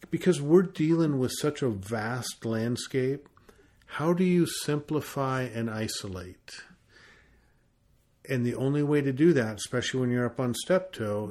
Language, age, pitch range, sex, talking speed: English, 50-69, 115-140 Hz, male, 145 wpm